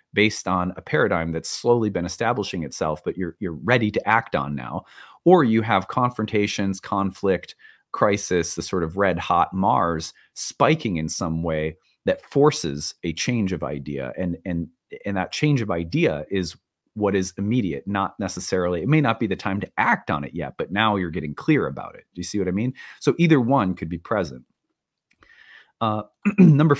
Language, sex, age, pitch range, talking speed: English, male, 30-49, 85-110 Hz, 190 wpm